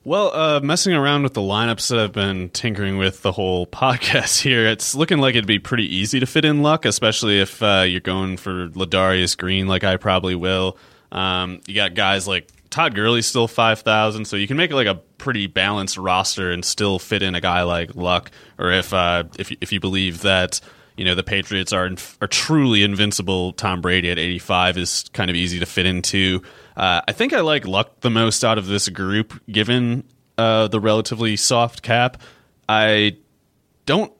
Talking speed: 200 wpm